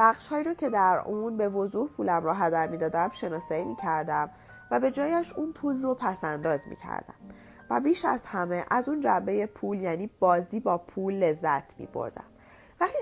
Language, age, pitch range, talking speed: Persian, 30-49, 160-240 Hz, 195 wpm